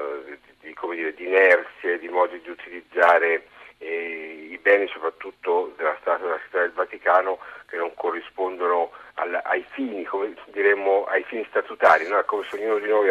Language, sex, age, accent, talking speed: Italian, male, 50-69, native, 165 wpm